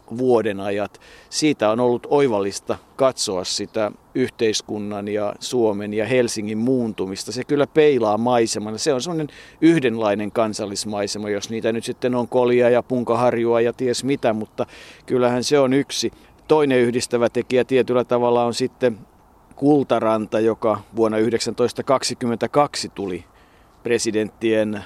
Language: Finnish